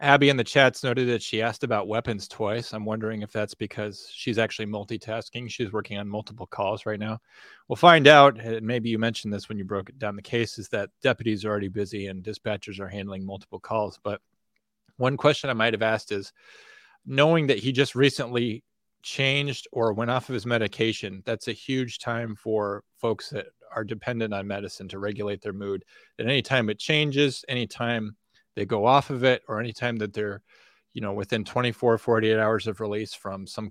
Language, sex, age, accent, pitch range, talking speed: English, male, 30-49, American, 105-120 Hz, 195 wpm